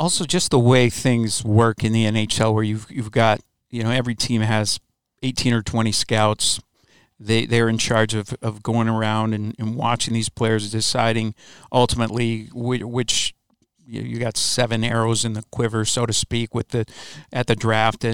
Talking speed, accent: 185 wpm, American